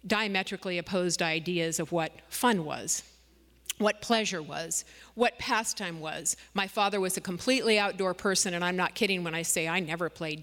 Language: English